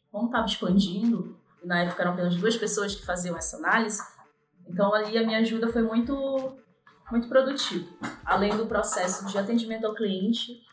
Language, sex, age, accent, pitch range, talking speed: Portuguese, female, 20-39, Brazilian, 185-245 Hz, 160 wpm